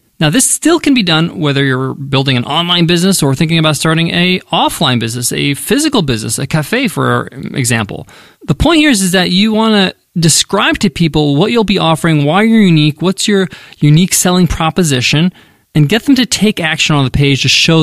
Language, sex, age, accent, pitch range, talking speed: English, male, 20-39, American, 140-190 Hz, 205 wpm